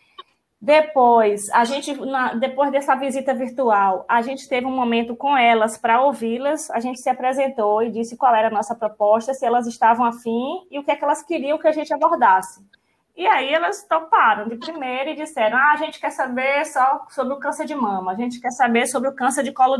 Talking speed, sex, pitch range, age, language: 205 wpm, female, 235-290 Hz, 20-39, Portuguese